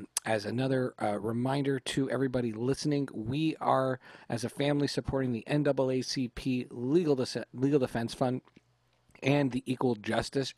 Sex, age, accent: male, 40-59, American